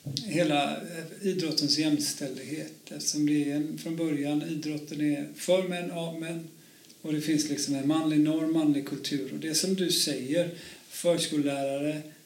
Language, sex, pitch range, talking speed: Swedish, male, 140-165 Hz, 140 wpm